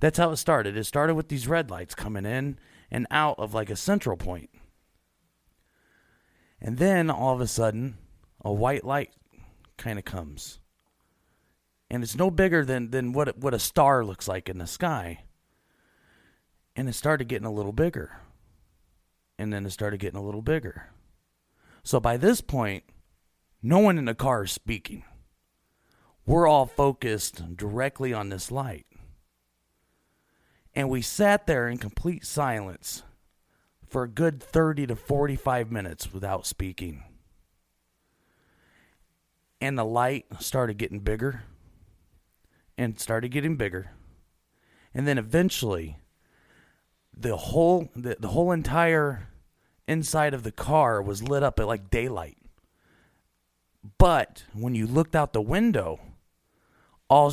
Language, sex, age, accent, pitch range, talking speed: English, male, 40-59, American, 95-140 Hz, 140 wpm